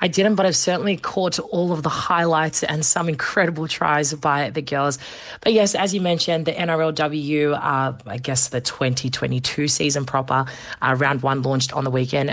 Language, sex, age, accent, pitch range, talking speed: English, female, 20-39, Australian, 135-160 Hz, 185 wpm